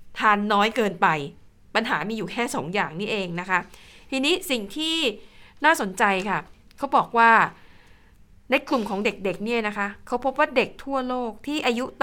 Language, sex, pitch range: Thai, female, 195-250 Hz